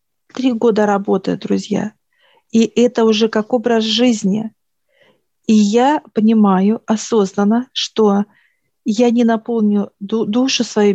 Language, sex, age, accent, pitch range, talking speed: Russian, female, 50-69, native, 205-235 Hz, 110 wpm